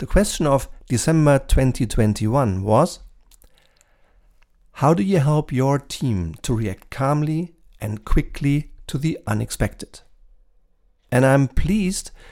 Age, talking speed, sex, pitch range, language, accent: 50-69, 110 wpm, male, 120-160 Hz, German, German